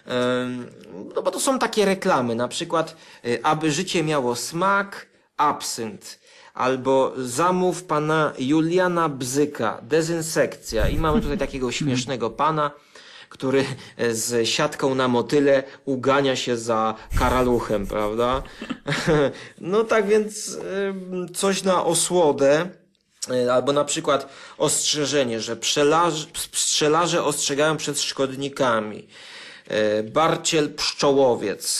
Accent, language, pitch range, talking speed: native, Polish, 125-165 Hz, 100 wpm